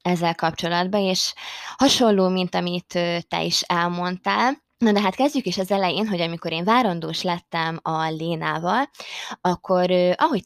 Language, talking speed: Hungarian, 145 wpm